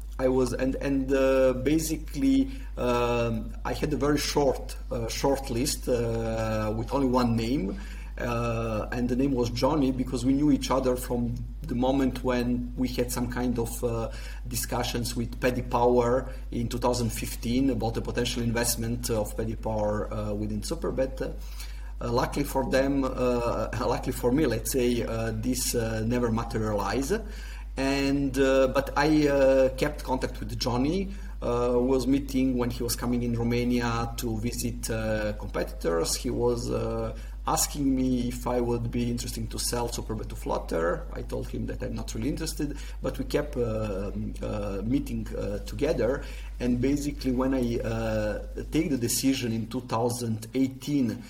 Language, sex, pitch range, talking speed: English, male, 115-130 Hz, 160 wpm